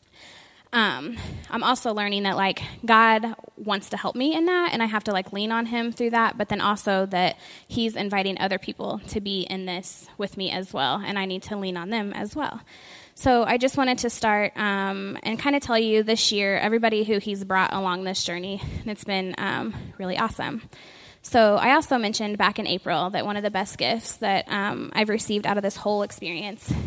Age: 10-29